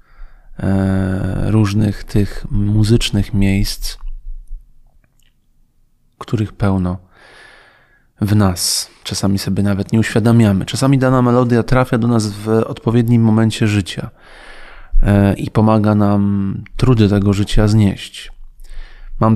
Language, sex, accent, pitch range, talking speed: Polish, male, native, 100-110 Hz, 95 wpm